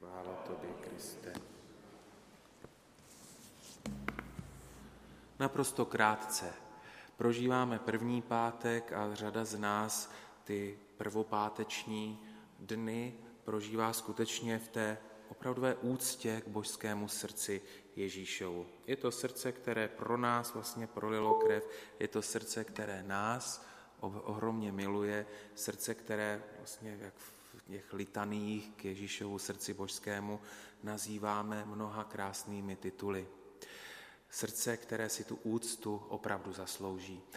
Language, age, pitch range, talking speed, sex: Slovak, 30-49, 100-110 Hz, 95 wpm, male